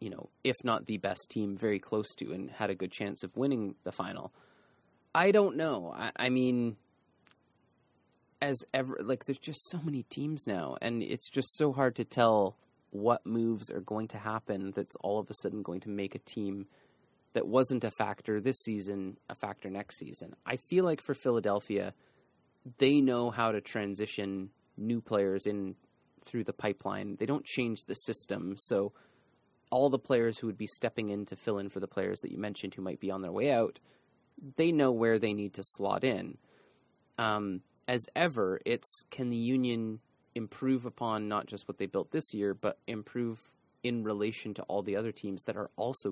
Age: 30-49